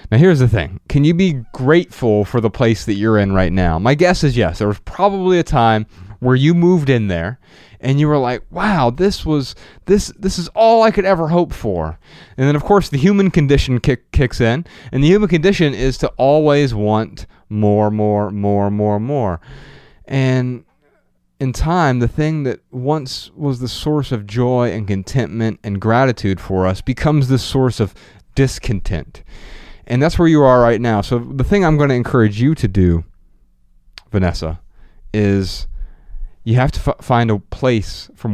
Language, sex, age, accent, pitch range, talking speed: English, male, 30-49, American, 105-150 Hz, 185 wpm